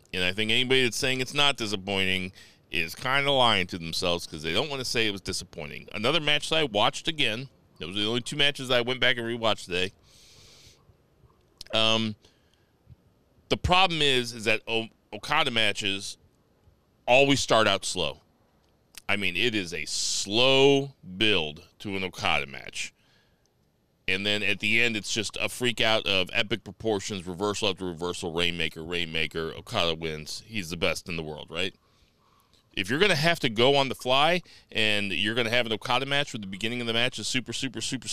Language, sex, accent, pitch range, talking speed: English, male, American, 95-135 Hz, 190 wpm